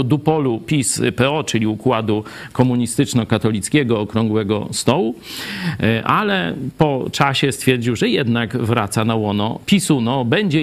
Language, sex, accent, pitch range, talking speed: Polish, male, native, 115-165 Hz, 115 wpm